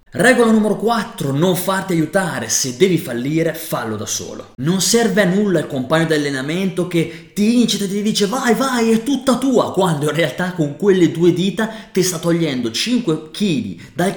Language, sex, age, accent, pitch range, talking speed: Italian, male, 30-49, native, 135-195 Hz, 185 wpm